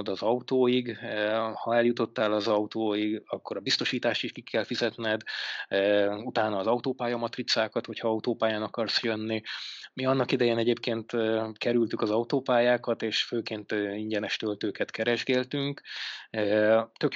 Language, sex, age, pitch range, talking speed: Hungarian, male, 20-39, 110-125 Hz, 115 wpm